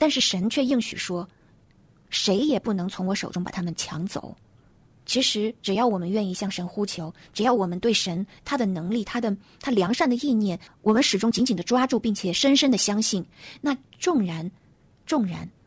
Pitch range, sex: 185-245 Hz, female